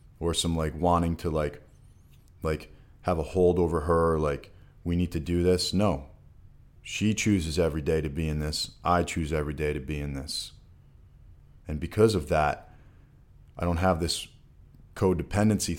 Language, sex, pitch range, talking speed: English, male, 80-90 Hz, 165 wpm